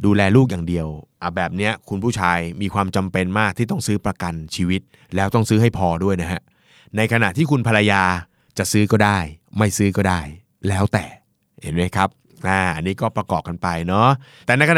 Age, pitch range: 20-39, 100-130 Hz